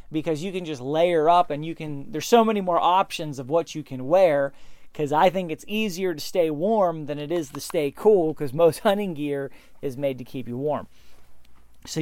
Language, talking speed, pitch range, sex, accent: English, 220 wpm, 150-205 Hz, male, American